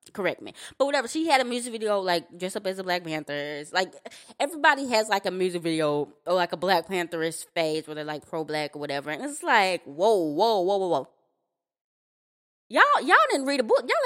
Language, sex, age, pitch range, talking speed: English, female, 20-39, 175-230 Hz, 215 wpm